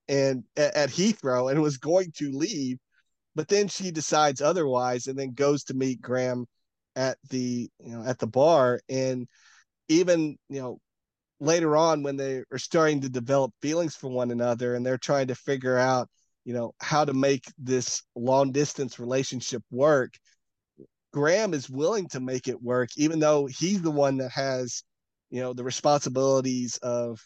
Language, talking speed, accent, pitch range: English, 170 wpm, American, 125-145 Hz